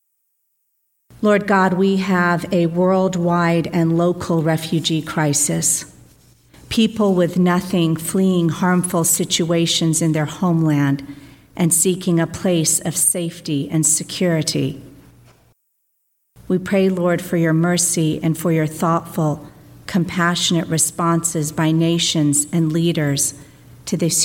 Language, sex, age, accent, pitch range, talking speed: English, female, 50-69, American, 150-175 Hz, 110 wpm